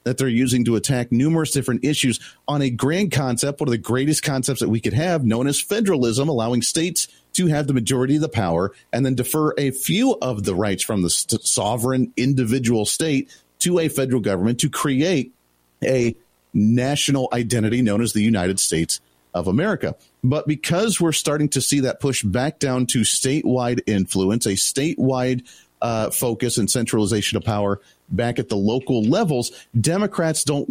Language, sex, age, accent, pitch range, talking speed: English, male, 40-59, American, 110-140 Hz, 175 wpm